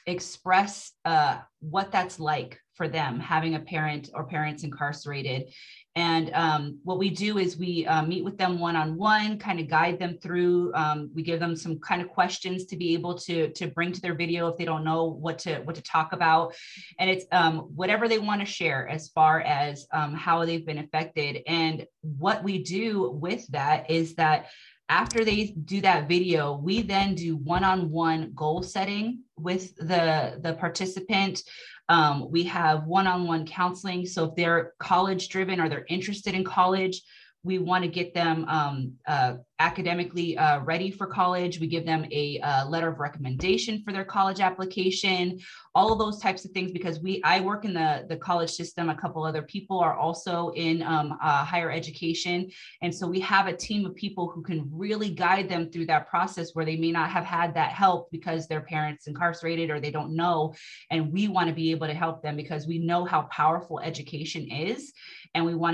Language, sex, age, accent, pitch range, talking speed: English, female, 30-49, American, 160-185 Hz, 190 wpm